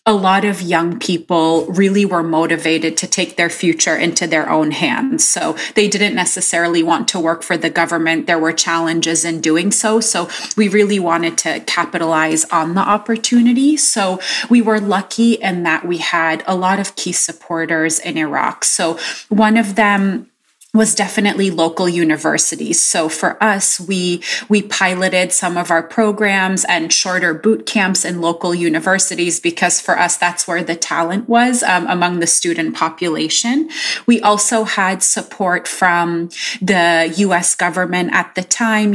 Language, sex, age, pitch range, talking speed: English, female, 30-49, 170-205 Hz, 160 wpm